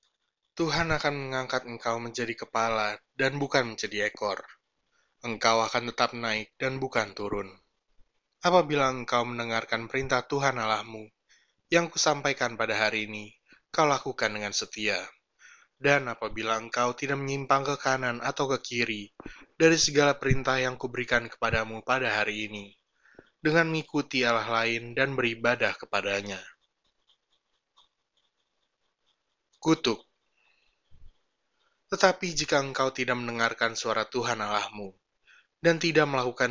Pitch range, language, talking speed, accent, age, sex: 110-135 Hz, Indonesian, 115 wpm, native, 20-39, male